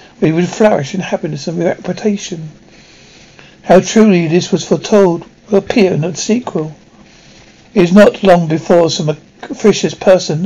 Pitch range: 165-200 Hz